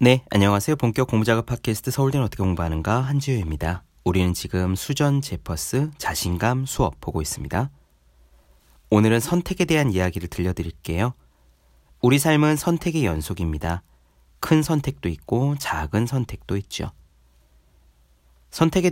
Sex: male